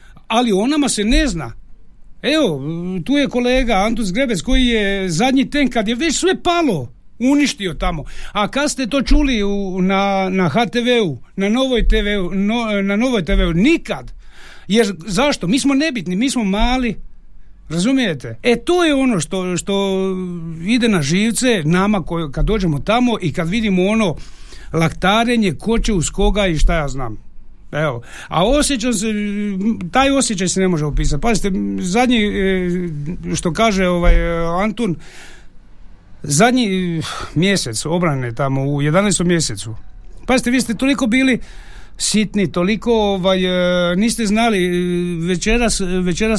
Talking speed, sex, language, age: 140 wpm, male, Croatian, 60-79